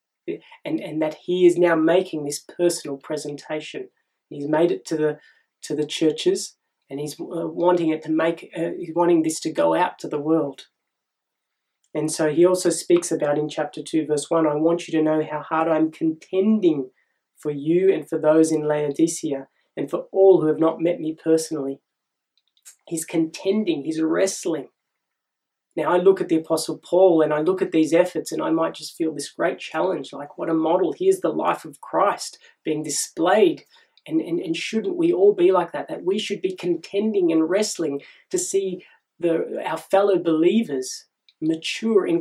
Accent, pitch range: Australian, 155-190 Hz